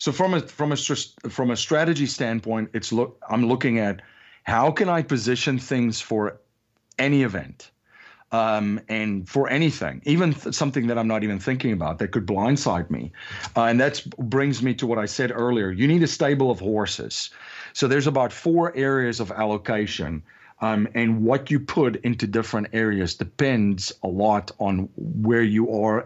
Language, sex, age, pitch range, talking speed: English, male, 40-59, 105-135 Hz, 175 wpm